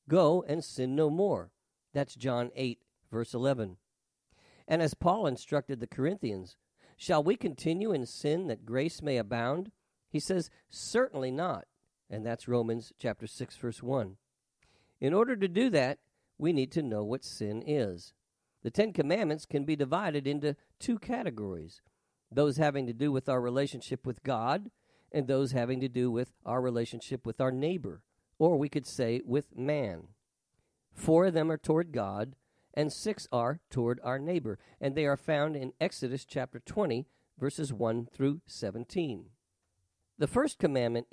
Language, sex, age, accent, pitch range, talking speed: English, male, 50-69, American, 120-155 Hz, 160 wpm